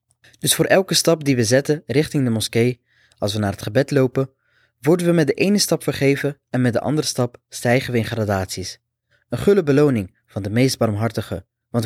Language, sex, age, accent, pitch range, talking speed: Dutch, male, 20-39, Dutch, 115-140 Hz, 200 wpm